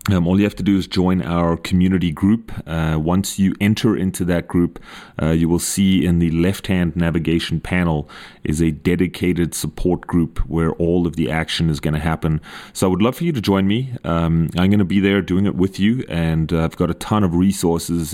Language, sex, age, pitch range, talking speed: English, male, 30-49, 80-95 Hz, 230 wpm